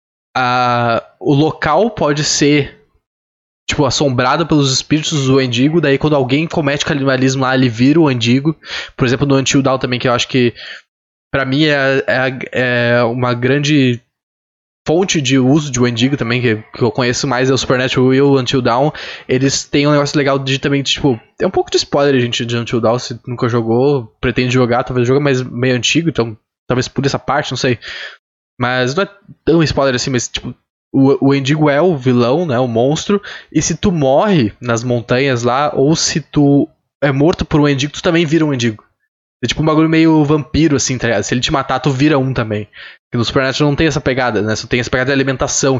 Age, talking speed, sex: 10-29, 210 wpm, male